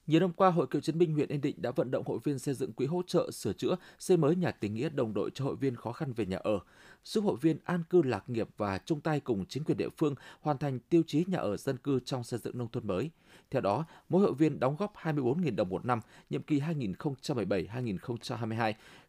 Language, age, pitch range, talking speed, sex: Vietnamese, 20-39, 120-165 Hz, 250 wpm, male